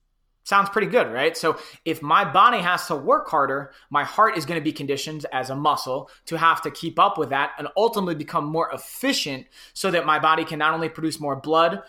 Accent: American